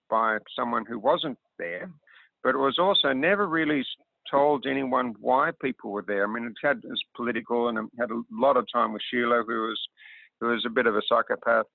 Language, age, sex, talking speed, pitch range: English, 50-69, male, 215 wpm, 110-135 Hz